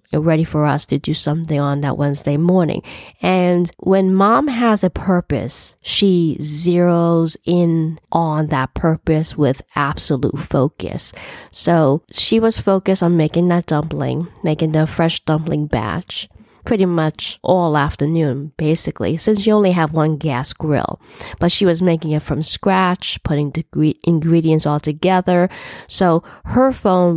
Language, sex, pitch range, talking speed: English, female, 155-190 Hz, 145 wpm